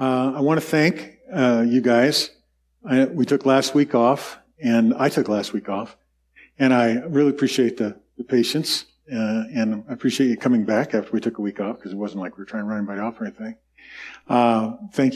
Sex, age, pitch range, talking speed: male, 40-59, 115-145 Hz, 220 wpm